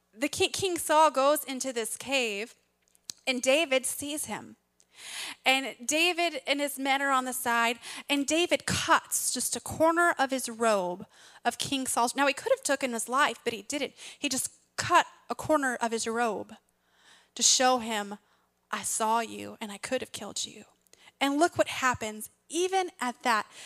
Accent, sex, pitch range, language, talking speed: American, female, 235-290 Hz, English, 175 wpm